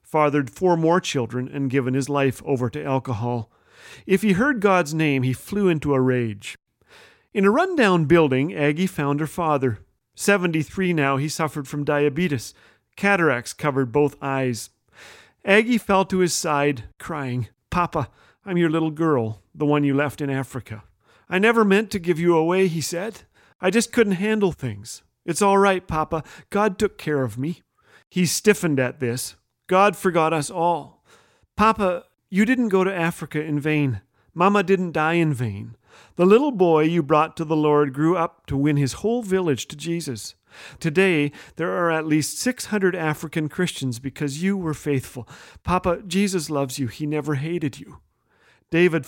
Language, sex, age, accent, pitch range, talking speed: English, male, 40-59, American, 135-180 Hz, 170 wpm